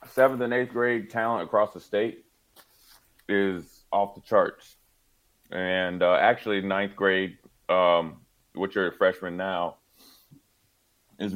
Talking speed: 120 wpm